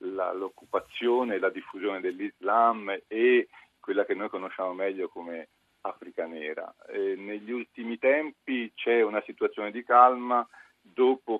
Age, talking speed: 40-59, 125 wpm